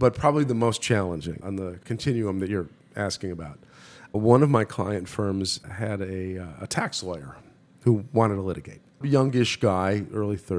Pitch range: 95-115 Hz